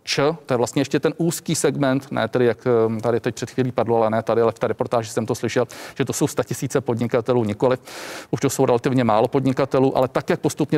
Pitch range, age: 120-140 Hz, 40-59